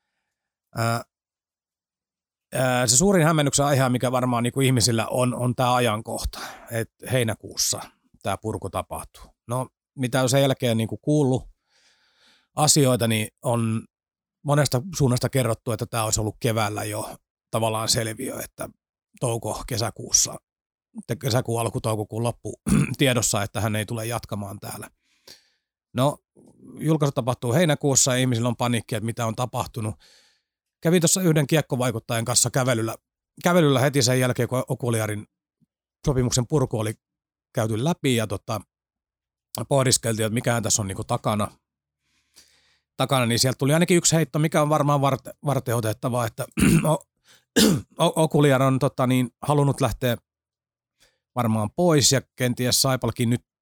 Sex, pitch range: male, 110-130 Hz